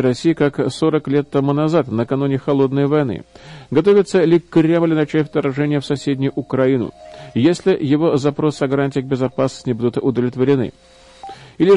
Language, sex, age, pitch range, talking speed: Russian, male, 40-59, 135-170 Hz, 140 wpm